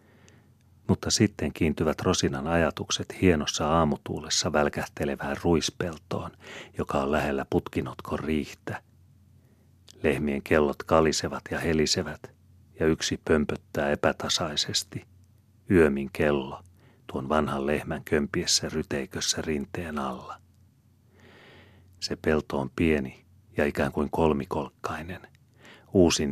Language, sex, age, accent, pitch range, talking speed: Finnish, male, 40-59, native, 75-100 Hz, 95 wpm